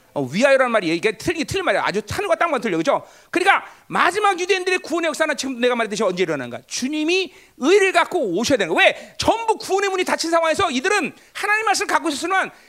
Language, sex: Korean, male